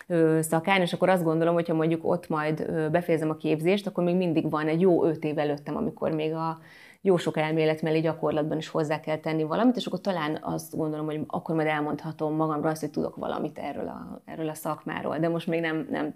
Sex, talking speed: female, 215 wpm